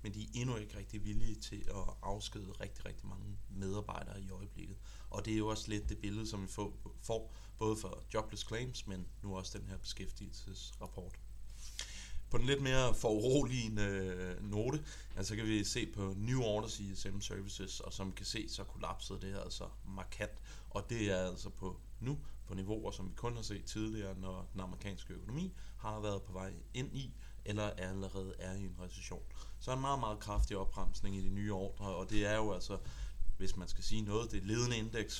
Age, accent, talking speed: 30-49, native, 205 wpm